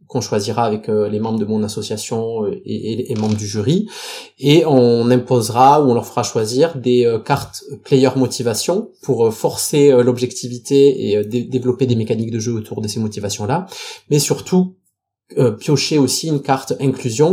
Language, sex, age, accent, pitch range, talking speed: French, male, 20-39, French, 115-135 Hz, 160 wpm